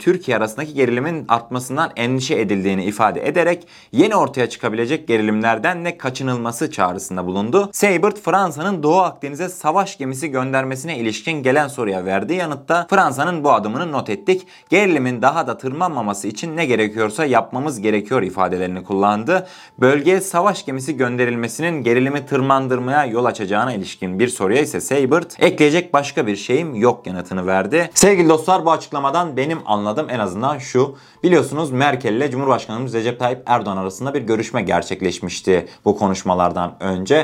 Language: Turkish